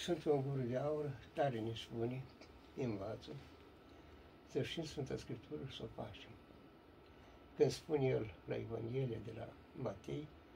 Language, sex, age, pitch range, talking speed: Romanian, male, 60-79, 115-155 Hz, 140 wpm